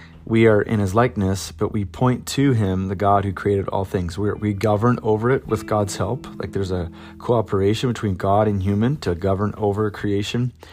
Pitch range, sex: 95-115 Hz, male